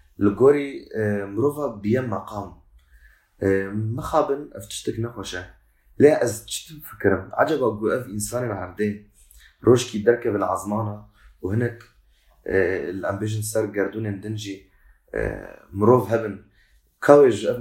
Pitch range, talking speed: 95-115 Hz, 65 wpm